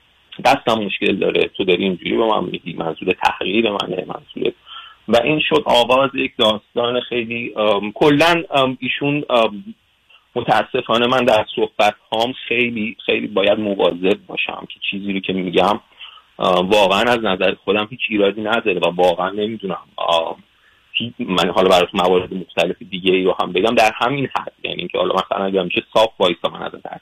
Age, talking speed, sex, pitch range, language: 30-49, 165 wpm, male, 95-120 Hz, Persian